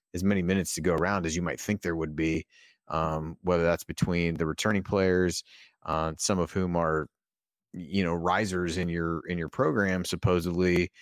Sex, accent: male, American